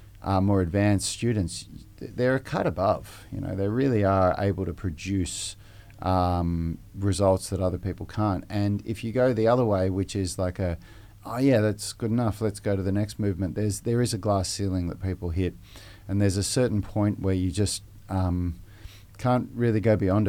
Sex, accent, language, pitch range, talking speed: male, Australian, English, 95-110 Hz, 195 wpm